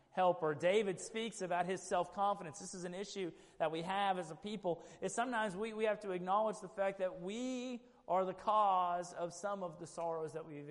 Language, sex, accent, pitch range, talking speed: English, male, American, 155-195 Hz, 205 wpm